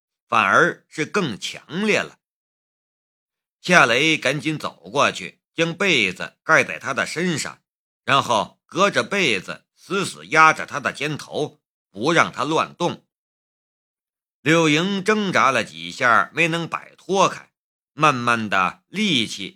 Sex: male